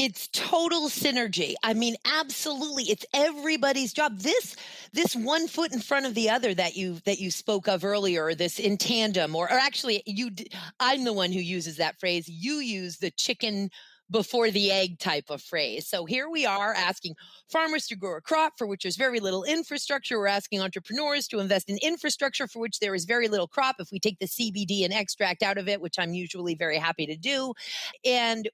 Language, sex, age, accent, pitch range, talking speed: English, female, 40-59, American, 175-240 Hz, 205 wpm